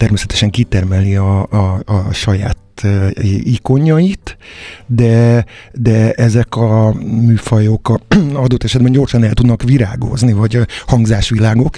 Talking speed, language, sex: 110 wpm, Hungarian, male